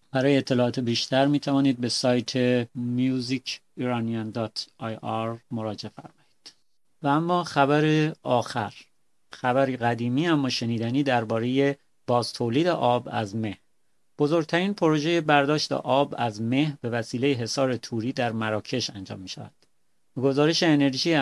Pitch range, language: 120-140 Hz, Persian